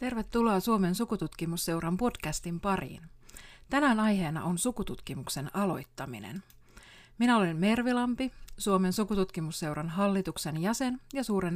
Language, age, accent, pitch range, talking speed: Finnish, 30-49, native, 165-230 Hz, 100 wpm